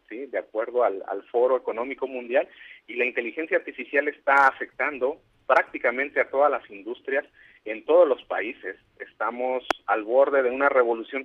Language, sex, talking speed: Spanish, male, 155 wpm